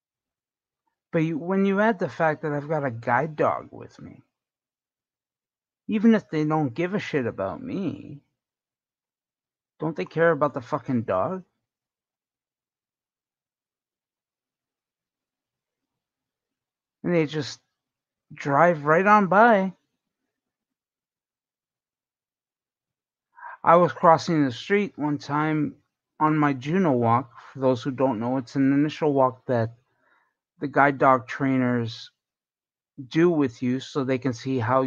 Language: English